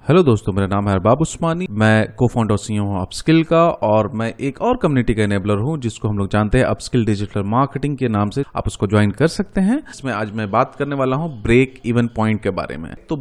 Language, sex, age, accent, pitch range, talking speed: Hindi, male, 30-49, native, 120-175 Hz, 235 wpm